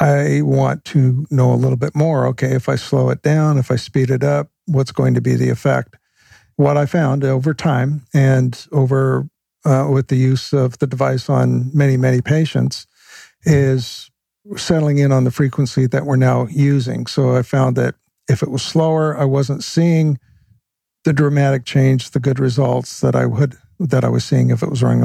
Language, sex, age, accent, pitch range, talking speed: English, male, 50-69, American, 130-155 Hz, 195 wpm